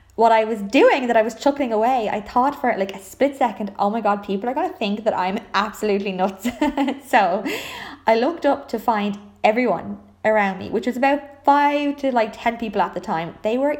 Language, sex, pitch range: English, female, 200-260 Hz